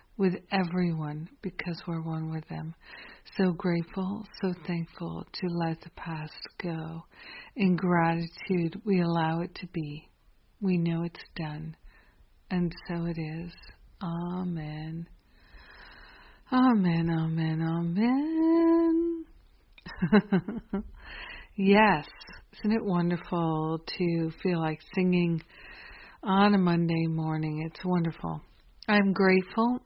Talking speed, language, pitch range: 105 wpm, English, 165-190 Hz